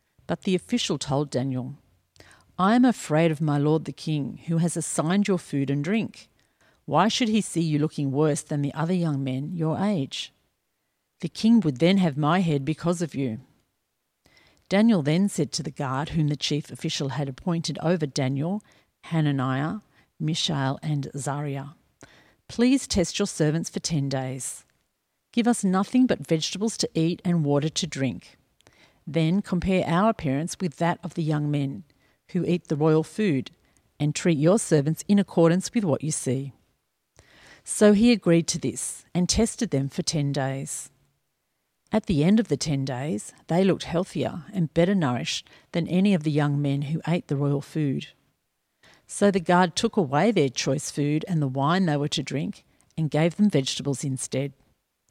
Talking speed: 175 wpm